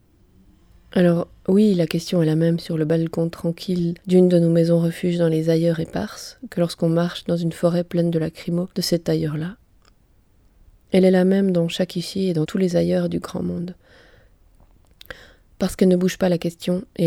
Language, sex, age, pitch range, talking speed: French, female, 20-39, 165-185 Hz, 190 wpm